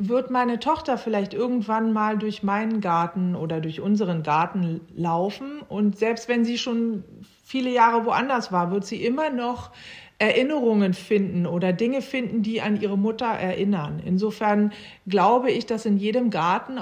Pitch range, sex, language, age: 185-220 Hz, female, German, 40-59